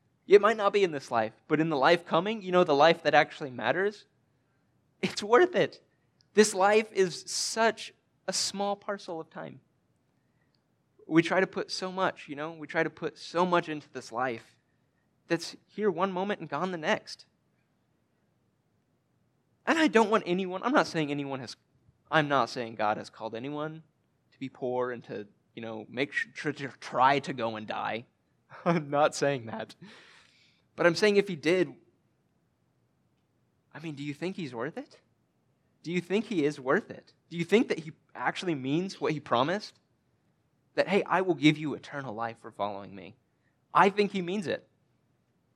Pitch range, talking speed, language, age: 125-180 Hz, 185 wpm, English, 20-39